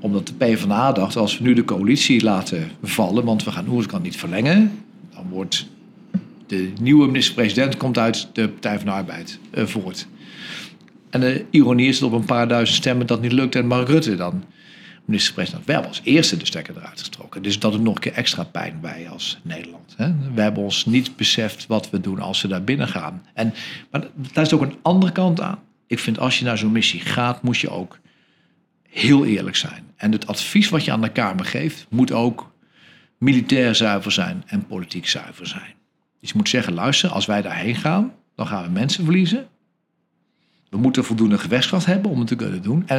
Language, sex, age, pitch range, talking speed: Dutch, male, 50-69, 110-170 Hz, 205 wpm